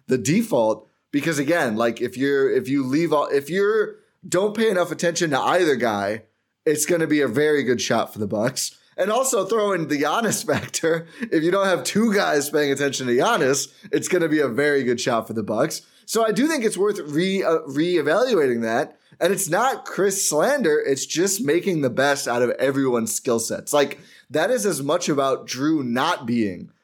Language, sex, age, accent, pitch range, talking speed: English, male, 20-39, American, 125-170 Hz, 205 wpm